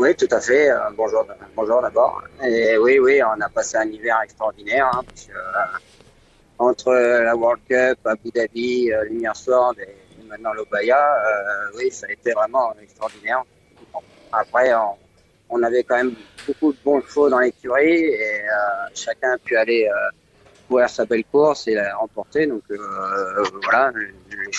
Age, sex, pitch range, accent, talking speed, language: 30-49, male, 105-165 Hz, French, 165 wpm, French